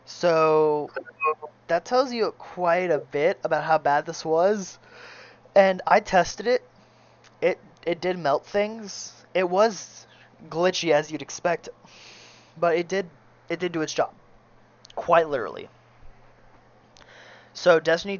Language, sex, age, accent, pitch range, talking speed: English, male, 20-39, American, 150-190 Hz, 130 wpm